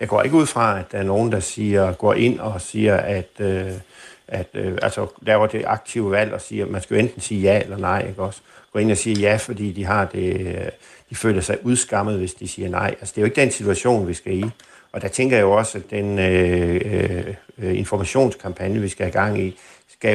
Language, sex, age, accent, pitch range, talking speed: Danish, male, 60-79, native, 95-115 Hz, 240 wpm